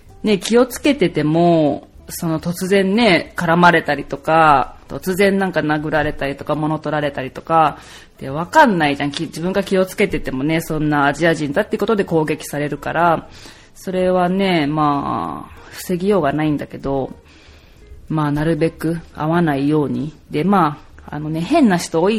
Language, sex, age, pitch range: Japanese, female, 20-39, 145-190 Hz